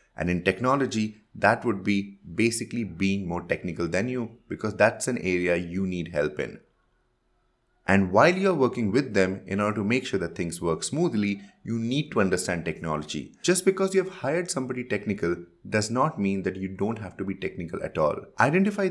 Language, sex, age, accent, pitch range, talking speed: English, male, 30-49, Indian, 90-125 Hz, 190 wpm